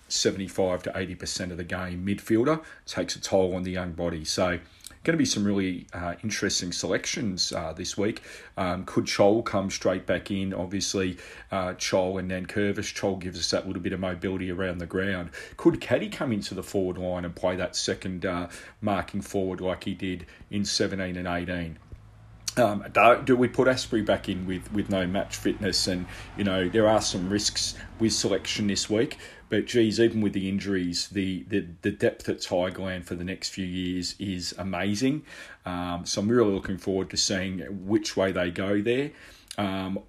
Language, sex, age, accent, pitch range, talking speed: English, male, 40-59, Australian, 90-105 Hz, 195 wpm